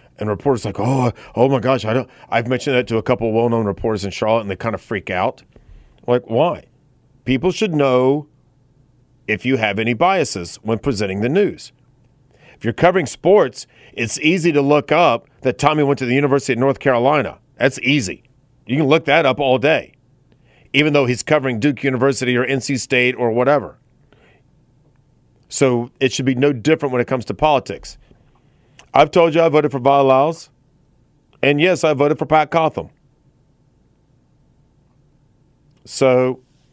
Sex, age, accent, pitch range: male, 40-59, American, 120-140 Hz